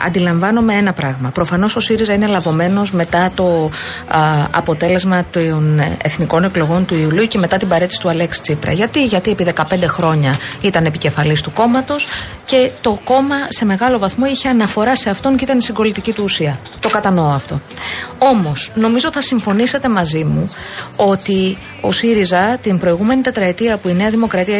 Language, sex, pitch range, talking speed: Greek, female, 165-250 Hz, 160 wpm